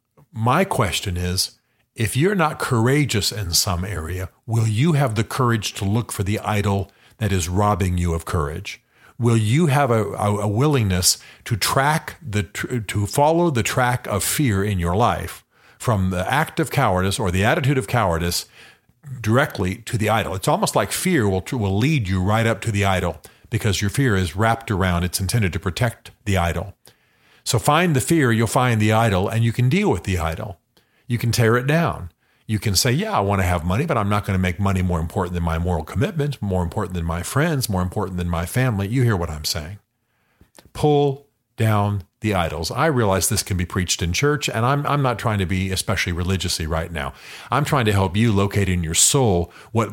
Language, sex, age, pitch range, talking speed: English, male, 50-69, 95-120 Hz, 210 wpm